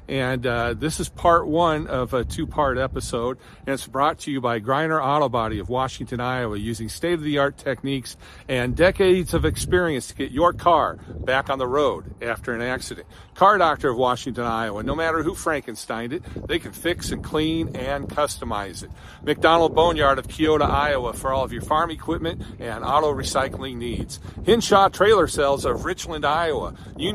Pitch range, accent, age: 125-165 Hz, American, 50-69